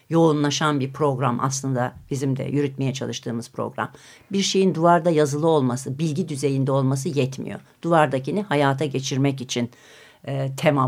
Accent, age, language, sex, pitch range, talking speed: native, 60-79, Turkish, female, 135-180 Hz, 130 wpm